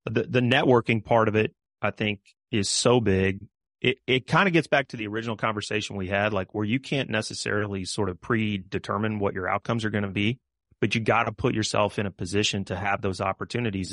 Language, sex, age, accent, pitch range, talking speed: English, male, 30-49, American, 100-115 Hz, 220 wpm